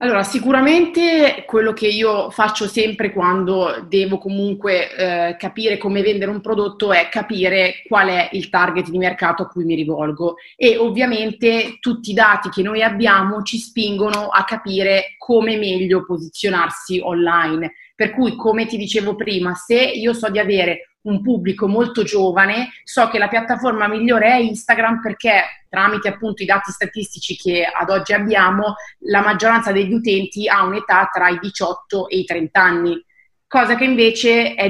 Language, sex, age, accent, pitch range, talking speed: Italian, female, 30-49, native, 190-225 Hz, 160 wpm